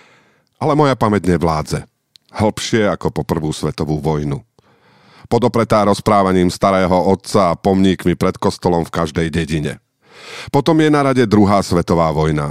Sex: male